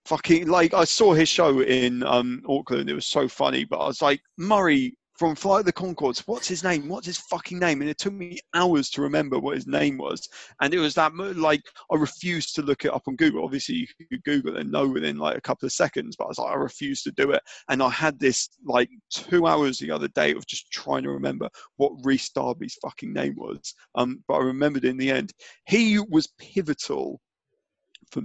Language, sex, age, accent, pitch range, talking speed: English, male, 30-49, British, 130-180 Hz, 230 wpm